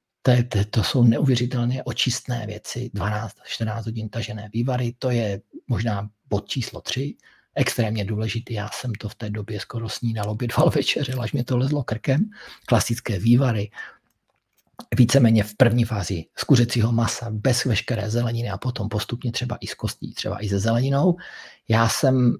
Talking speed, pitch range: 160 wpm, 105-120 Hz